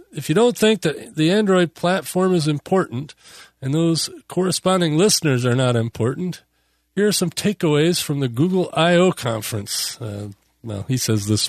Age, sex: 40-59, male